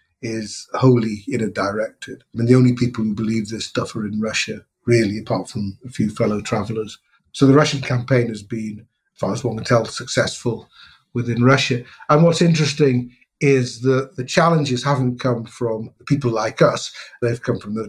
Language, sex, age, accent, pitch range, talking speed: English, male, 50-69, British, 110-135 Hz, 190 wpm